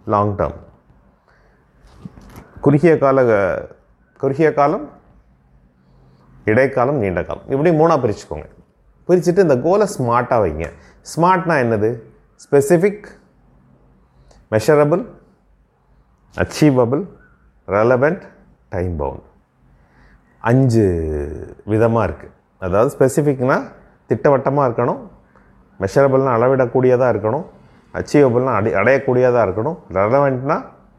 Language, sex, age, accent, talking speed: Tamil, male, 30-49, native, 75 wpm